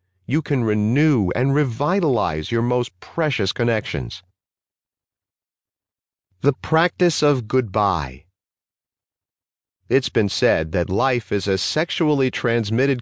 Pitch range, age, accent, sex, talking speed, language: 90-130 Hz, 50-69, American, male, 100 wpm, English